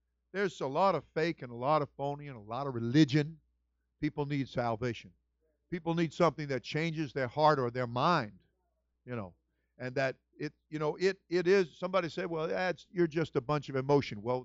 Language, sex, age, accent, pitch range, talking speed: English, male, 50-69, American, 135-210 Hz, 205 wpm